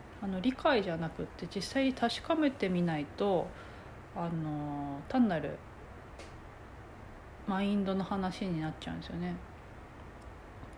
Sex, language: female, Japanese